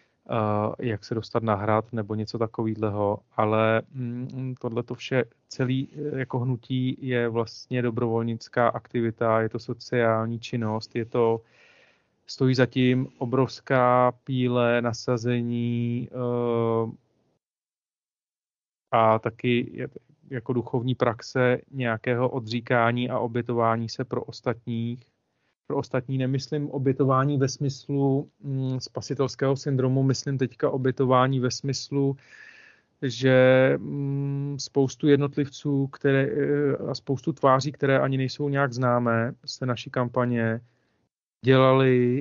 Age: 30-49